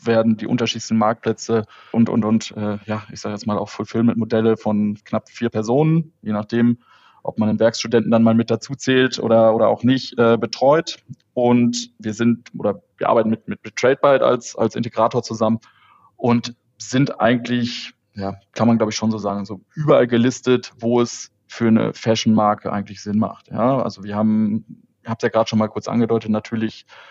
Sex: male